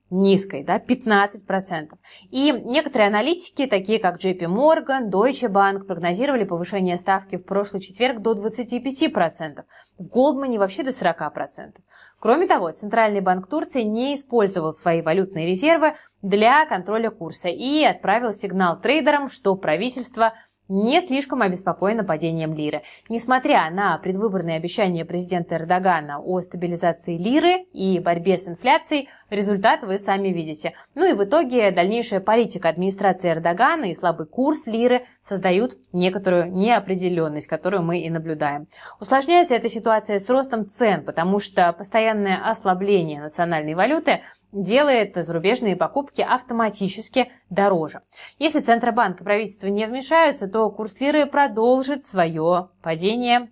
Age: 20-39